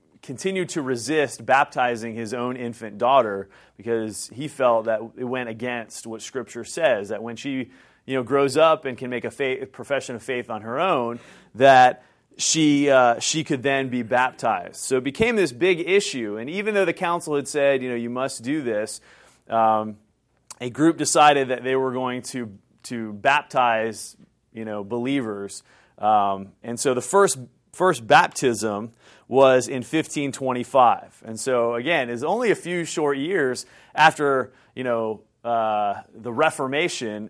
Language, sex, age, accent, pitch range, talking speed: English, male, 30-49, American, 115-145 Hz, 165 wpm